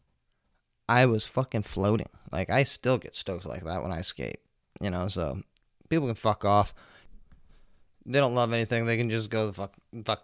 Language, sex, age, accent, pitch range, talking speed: English, male, 20-39, American, 100-125 Hz, 190 wpm